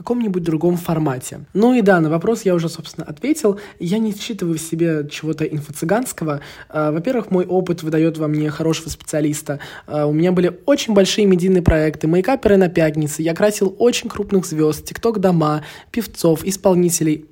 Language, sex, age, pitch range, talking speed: Russian, male, 20-39, 155-190 Hz, 165 wpm